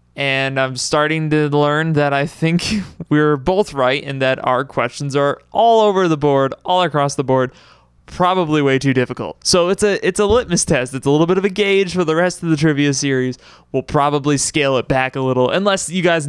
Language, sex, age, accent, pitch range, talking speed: English, male, 20-39, American, 130-160 Hz, 215 wpm